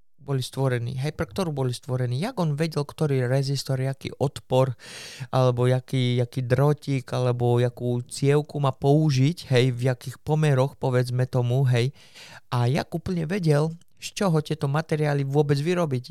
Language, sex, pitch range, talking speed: Slovak, male, 125-150 Hz, 145 wpm